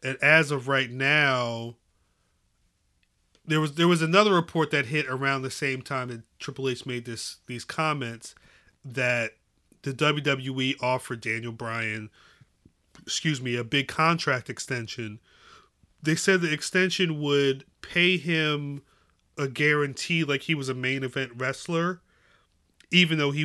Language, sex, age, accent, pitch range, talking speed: English, male, 30-49, American, 120-150 Hz, 140 wpm